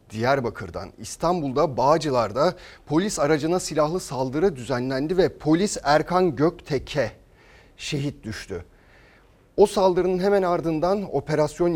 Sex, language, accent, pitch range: male, Turkish, native, 135-175 Hz